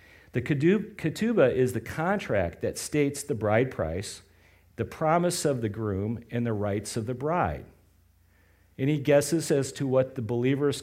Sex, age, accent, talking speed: male, 50-69, American, 155 wpm